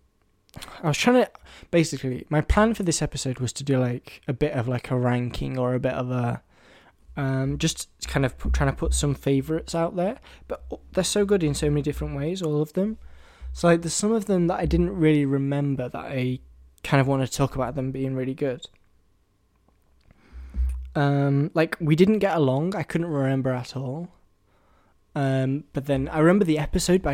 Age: 20-39